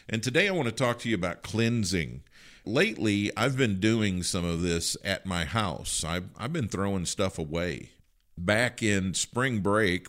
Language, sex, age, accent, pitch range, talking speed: English, male, 50-69, American, 85-105 Hz, 180 wpm